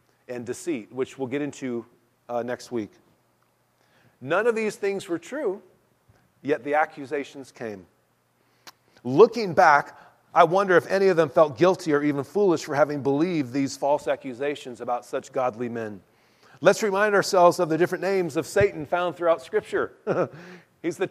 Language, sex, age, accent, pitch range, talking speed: English, male, 40-59, American, 140-205 Hz, 160 wpm